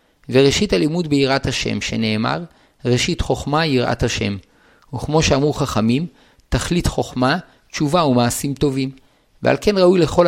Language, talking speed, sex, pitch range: Hebrew, 130 wpm, male, 125-155 Hz